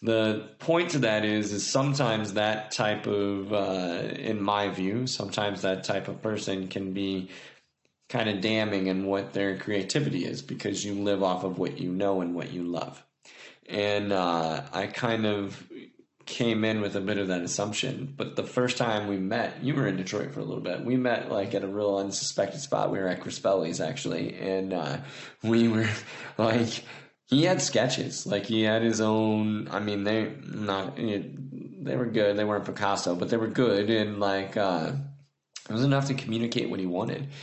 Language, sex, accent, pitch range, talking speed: English, male, American, 100-115 Hz, 190 wpm